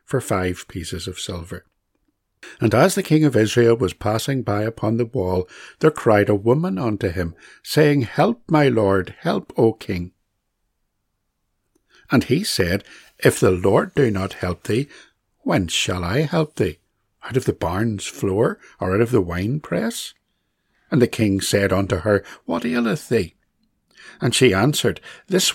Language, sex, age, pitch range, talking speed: English, male, 60-79, 95-135 Hz, 160 wpm